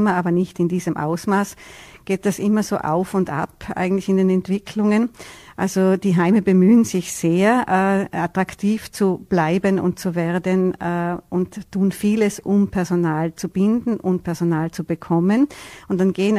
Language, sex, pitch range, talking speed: German, female, 175-195 Hz, 160 wpm